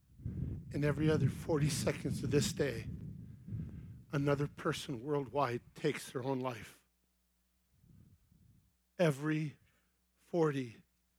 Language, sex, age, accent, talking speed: English, male, 50-69, American, 90 wpm